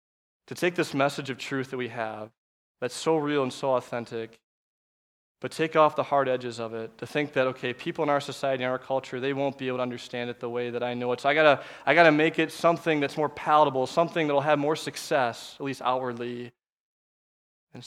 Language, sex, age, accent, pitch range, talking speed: English, male, 20-39, American, 125-155 Hz, 230 wpm